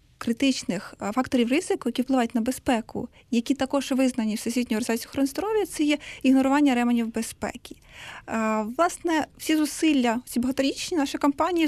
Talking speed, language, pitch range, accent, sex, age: 135 wpm, Ukrainian, 230-275 Hz, native, female, 20-39